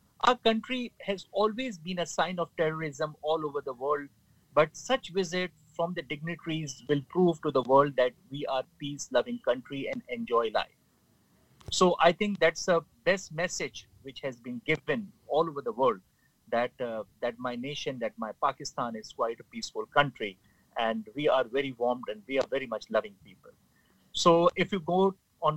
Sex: male